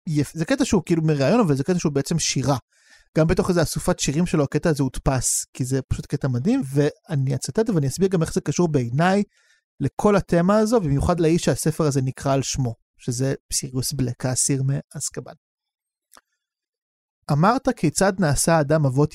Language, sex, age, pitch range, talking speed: Hebrew, male, 30-49, 135-175 Hz, 170 wpm